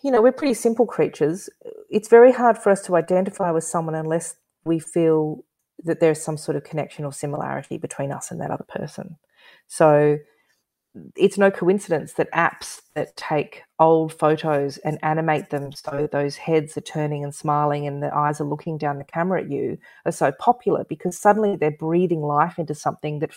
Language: English